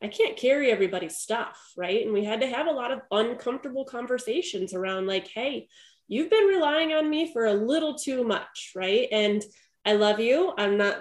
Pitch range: 195-245 Hz